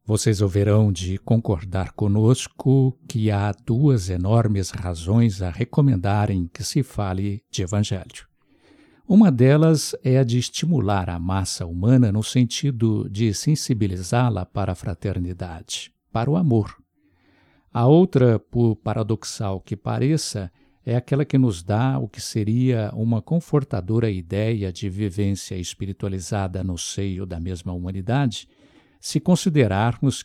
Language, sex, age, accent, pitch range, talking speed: Portuguese, male, 60-79, Brazilian, 95-135 Hz, 125 wpm